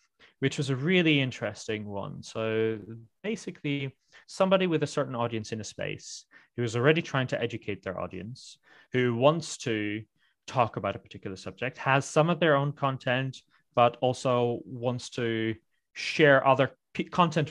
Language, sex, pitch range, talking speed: English, male, 110-140 Hz, 155 wpm